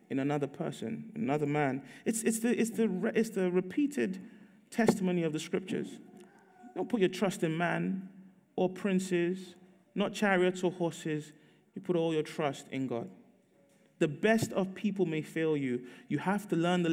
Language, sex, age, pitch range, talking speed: English, male, 30-49, 180-225 Hz, 155 wpm